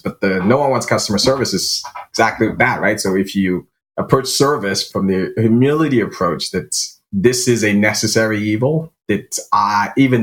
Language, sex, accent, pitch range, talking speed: English, male, American, 95-115 Hz, 170 wpm